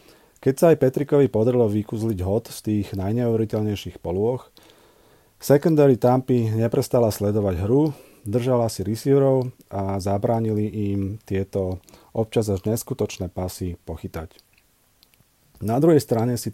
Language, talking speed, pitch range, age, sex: Slovak, 115 wpm, 95-120 Hz, 40-59, male